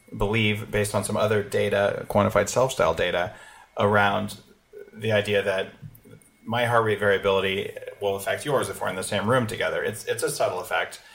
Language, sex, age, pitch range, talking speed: English, male, 30-49, 100-120 Hz, 180 wpm